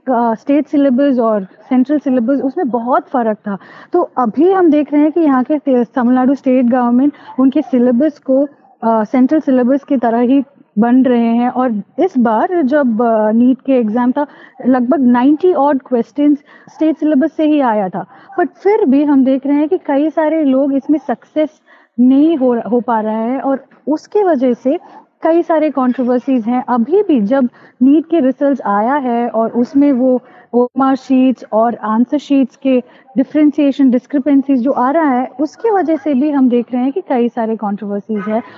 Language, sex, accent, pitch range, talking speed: Hindi, female, native, 240-290 Hz, 175 wpm